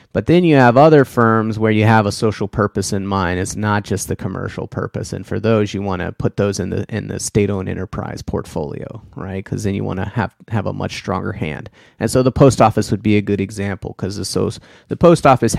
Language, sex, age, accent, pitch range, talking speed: English, male, 30-49, American, 95-115 Hz, 245 wpm